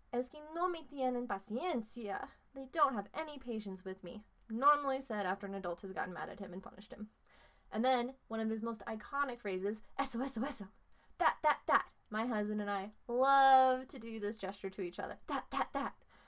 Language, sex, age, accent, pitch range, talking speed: English, female, 20-39, American, 205-285 Hz, 205 wpm